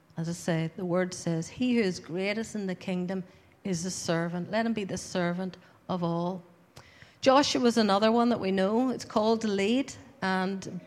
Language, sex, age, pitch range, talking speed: English, female, 50-69, 190-245 Hz, 195 wpm